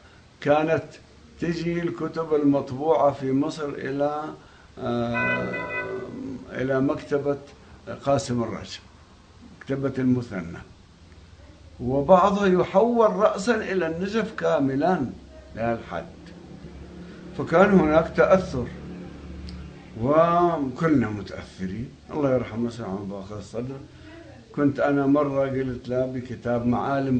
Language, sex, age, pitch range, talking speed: English, male, 60-79, 110-160 Hz, 85 wpm